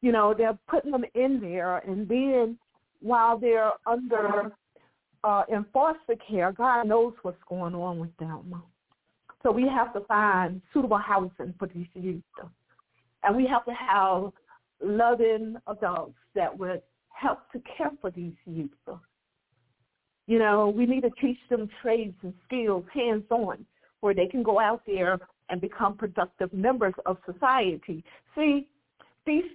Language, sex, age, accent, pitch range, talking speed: English, female, 50-69, American, 185-245 Hz, 150 wpm